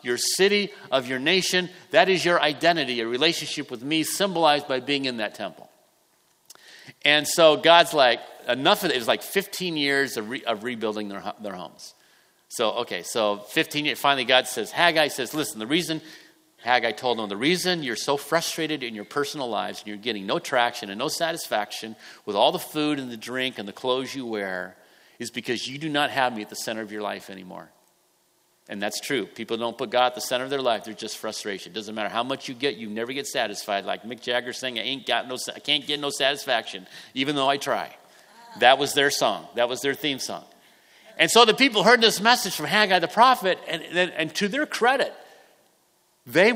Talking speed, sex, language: 215 wpm, male, English